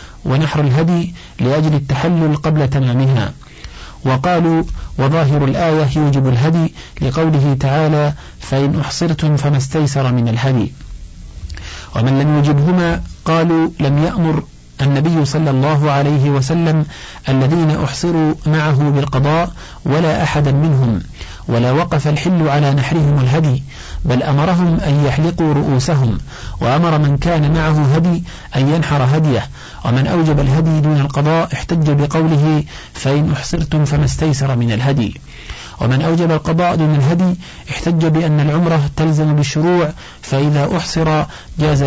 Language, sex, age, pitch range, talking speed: Arabic, male, 50-69, 135-160 Hz, 120 wpm